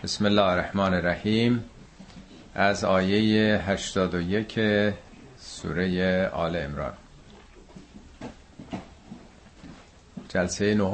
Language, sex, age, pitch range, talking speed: Persian, male, 50-69, 90-110 Hz, 65 wpm